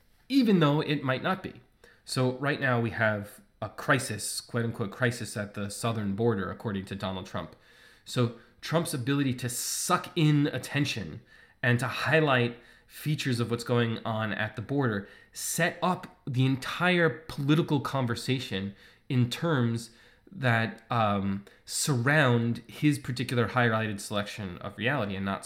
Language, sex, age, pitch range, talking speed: English, male, 20-39, 105-135 Hz, 145 wpm